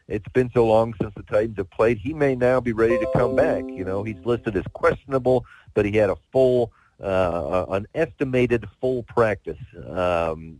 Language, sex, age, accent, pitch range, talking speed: English, male, 50-69, American, 95-120 Hz, 190 wpm